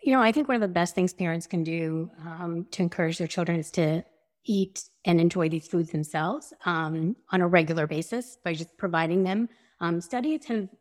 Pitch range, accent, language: 165-195 Hz, American, English